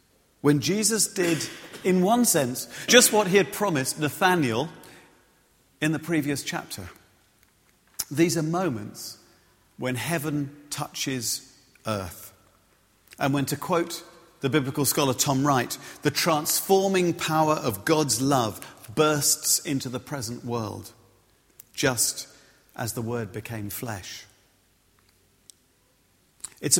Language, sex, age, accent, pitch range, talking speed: English, male, 50-69, British, 115-160 Hz, 110 wpm